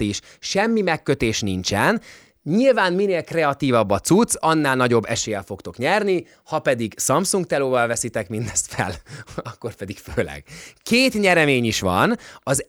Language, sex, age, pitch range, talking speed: Hungarian, male, 20-39, 110-160 Hz, 135 wpm